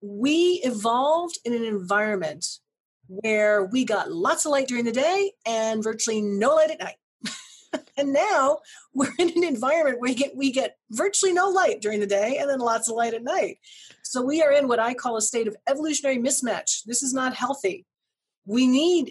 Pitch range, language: 205-285 Hz, English